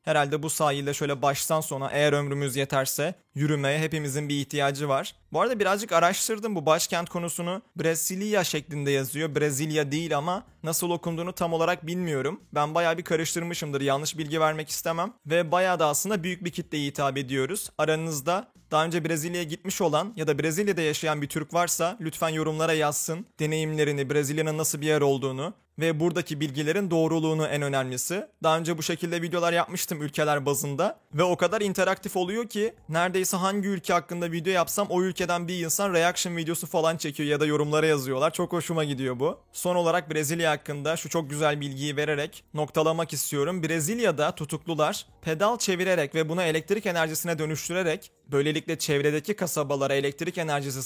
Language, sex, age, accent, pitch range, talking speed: Turkish, male, 30-49, native, 150-180 Hz, 165 wpm